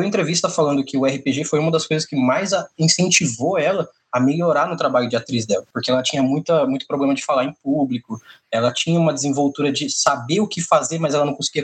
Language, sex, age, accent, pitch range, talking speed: Portuguese, male, 20-39, Brazilian, 140-200 Hz, 220 wpm